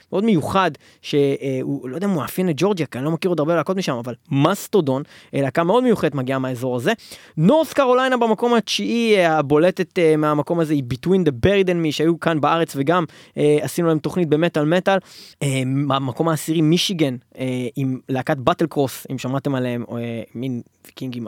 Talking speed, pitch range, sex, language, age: 160 wpm, 135-180 Hz, male, Hebrew, 20-39